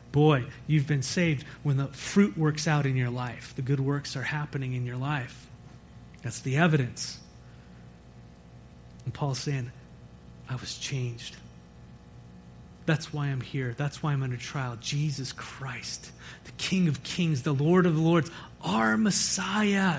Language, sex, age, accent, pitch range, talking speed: English, male, 30-49, American, 130-175 Hz, 150 wpm